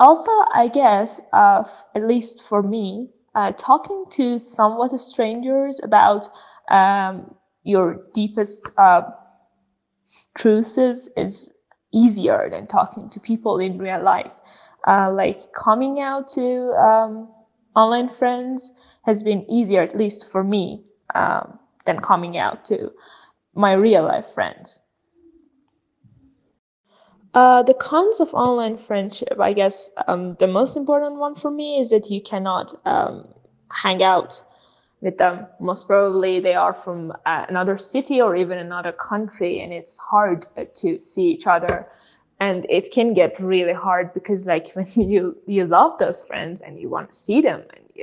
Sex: female